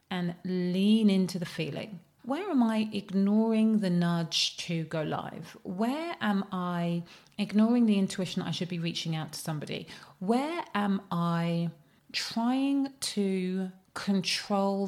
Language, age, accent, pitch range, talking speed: English, 30-49, British, 170-200 Hz, 135 wpm